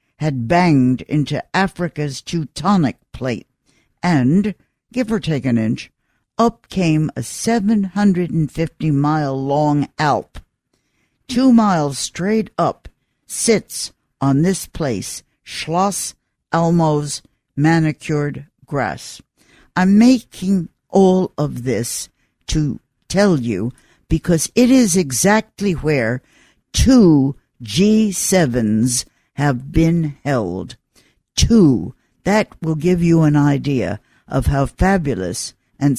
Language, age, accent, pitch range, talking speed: English, 60-79, American, 130-185 Hz, 95 wpm